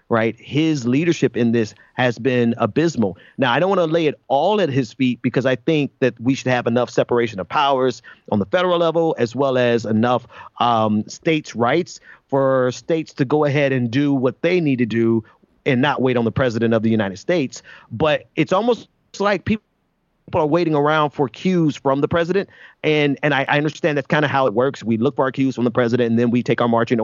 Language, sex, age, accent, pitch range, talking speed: English, male, 30-49, American, 120-150 Hz, 225 wpm